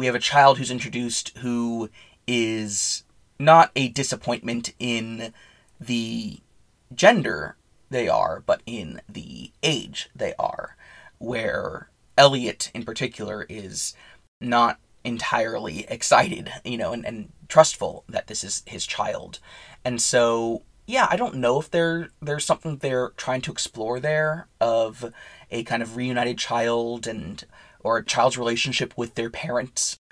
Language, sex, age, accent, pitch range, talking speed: English, male, 20-39, American, 115-145 Hz, 135 wpm